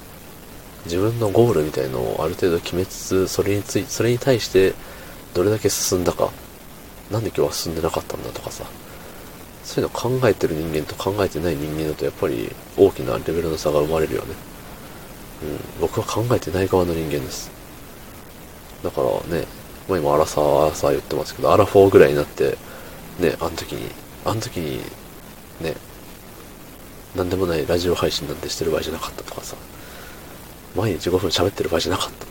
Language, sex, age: Japanese, male, 40-59